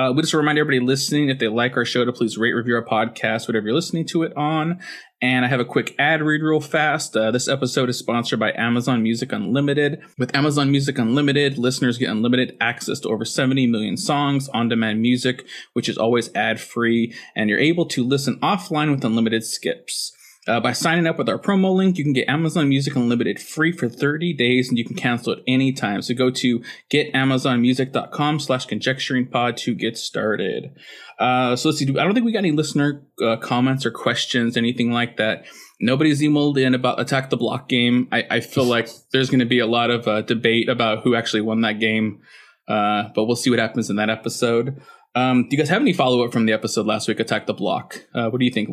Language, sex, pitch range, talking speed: English, male, 115-140 Hz, 220 wpm